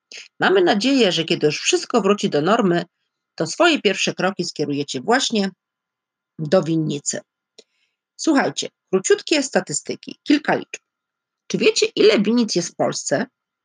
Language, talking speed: Polish, 130 wpm